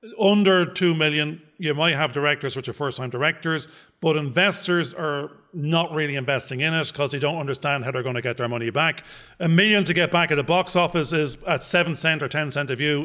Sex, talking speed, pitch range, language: male, 225 wpm, 135-180 Hz, English